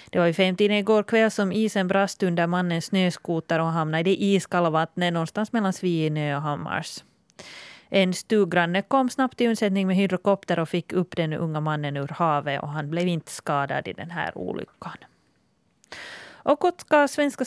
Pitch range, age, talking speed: 165-210 Hz, 30-49, 170 wpm